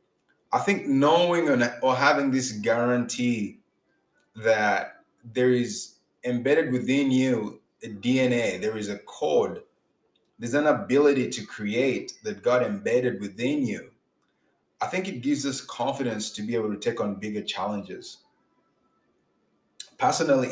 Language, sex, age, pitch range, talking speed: English, male, 20-39, 120-155 Hz, 130 wpm